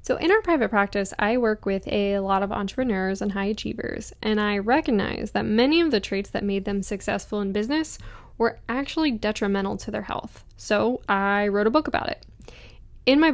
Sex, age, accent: female, 10-29, American